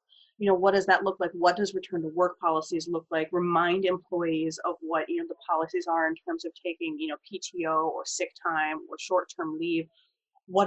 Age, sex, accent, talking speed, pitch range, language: 20-39, female, American, 220 wpm, 165-190 Hz, English